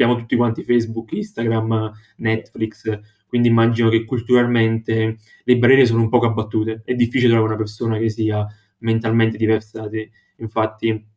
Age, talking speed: 20-39, 145 wpm